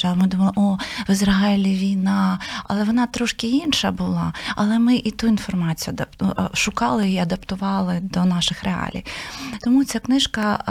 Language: Ukrainian